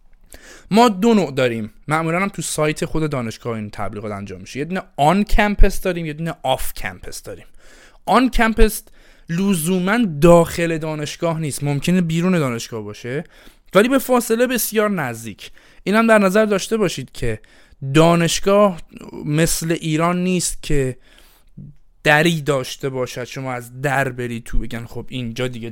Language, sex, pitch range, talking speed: Persian, male, 125-175 Hz, 140 wpm